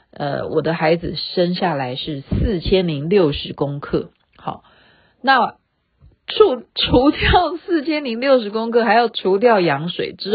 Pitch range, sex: 165-245 Hz, female